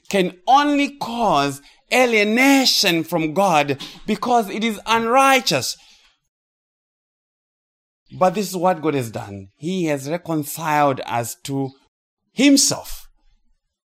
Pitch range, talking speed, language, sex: 140-230 Hz, 100 wpm, English, male